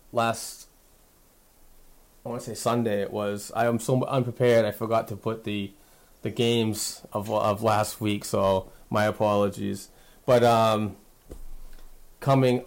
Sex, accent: male, American